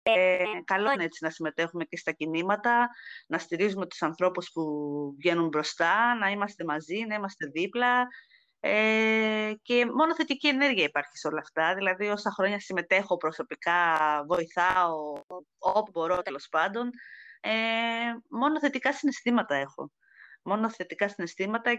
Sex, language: female, Greek